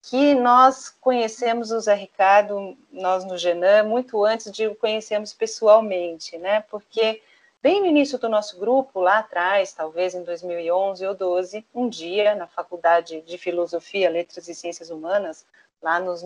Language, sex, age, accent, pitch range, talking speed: Portuguese, female, 40-59, Brazilian, 185-250 Hz, 155 wpm